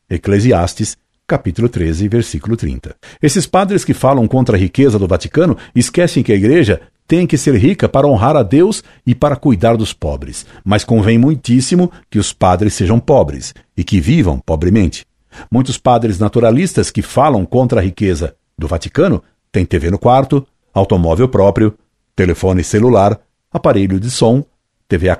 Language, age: Portuguese, 60-79